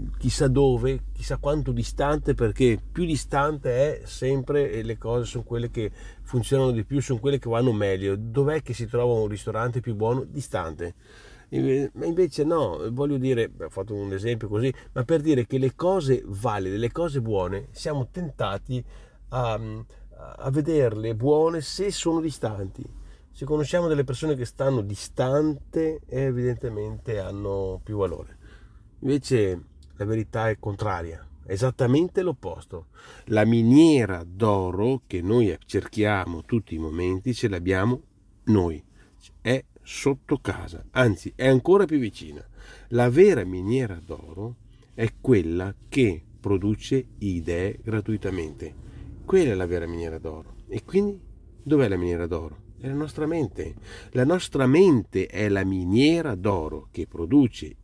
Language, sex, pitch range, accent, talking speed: Italian, male, 100-135 Hz, native, 140 wpm